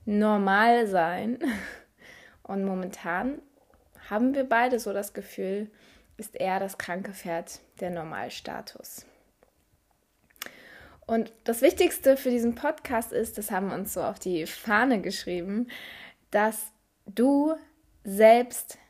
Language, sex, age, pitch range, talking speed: German, female, 20-39, 195-245 Hz, 115 wpm